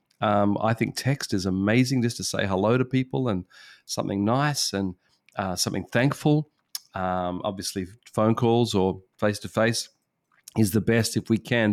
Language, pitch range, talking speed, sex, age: English, 105-120 Hz, 160 wpm, male, 40-59